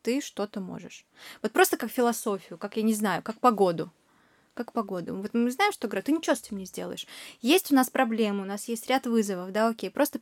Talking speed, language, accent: 215 wpm, Russian, native